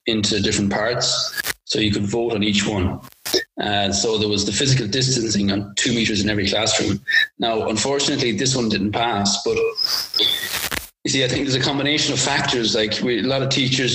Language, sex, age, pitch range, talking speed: English, male, 30-49, 100-130 Hz, 190 wpm